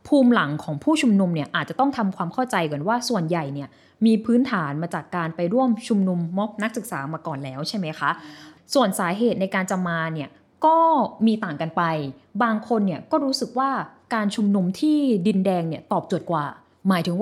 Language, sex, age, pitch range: Thai, female, 20-39, 170-245 Hz